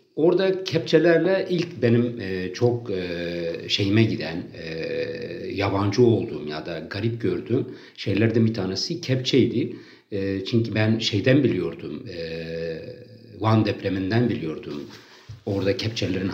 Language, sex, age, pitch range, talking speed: Turkish, male, 60-79, 95-120 Hz, 95 wpm